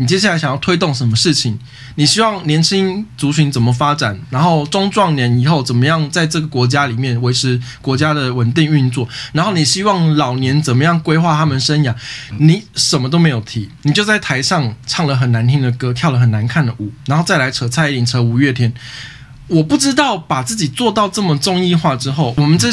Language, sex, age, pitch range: Chinese, male, 20-39, 125-170 Hz